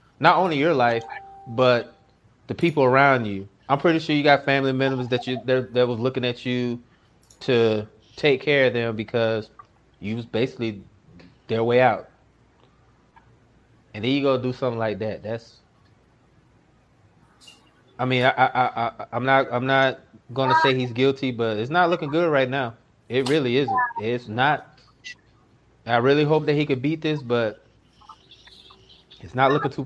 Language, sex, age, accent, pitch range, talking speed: English, male, 20-39, American, 115-145 Hz, 165 wpm